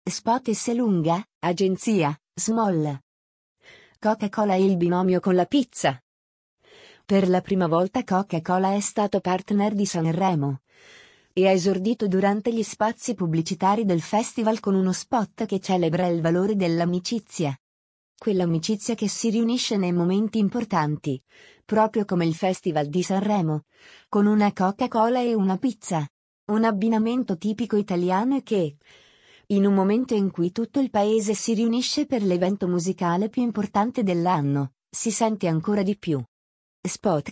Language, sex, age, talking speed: Italian, female, 30-49, 140 wpm